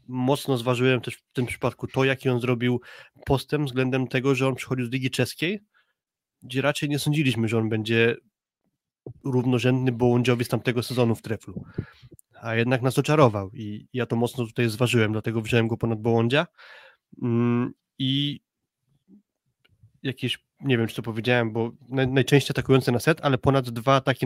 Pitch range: 115-130 Hz